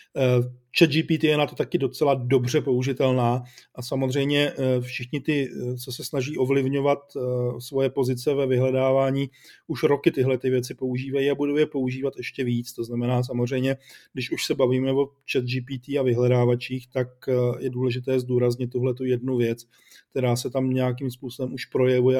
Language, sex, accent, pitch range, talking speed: Czech, male, native, 125-145 Hz, 155 wpm